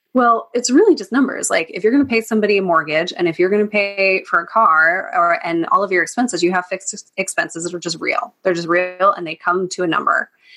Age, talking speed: 20-39, 260 wpm